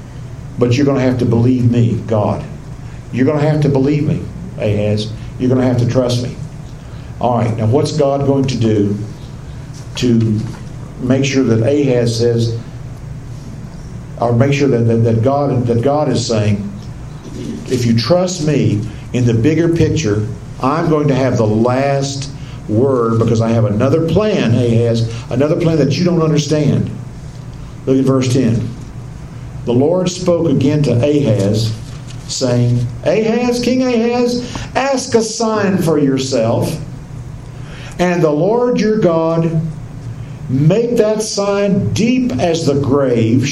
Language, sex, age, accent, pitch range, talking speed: English, male, 50-69, American, 120-160 Hz, 145 wpm